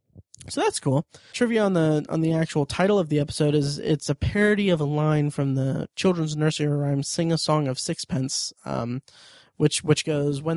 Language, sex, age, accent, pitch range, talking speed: English, male, 20-39, American, 140-170 Hz, 200 wpm